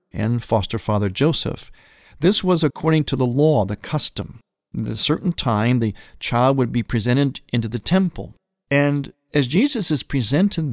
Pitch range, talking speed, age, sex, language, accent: 115-160 Hz, 160 wpm, 50-69, male, English, American